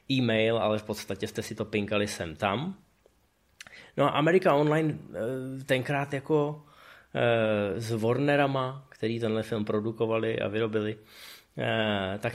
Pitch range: 110-145 Hz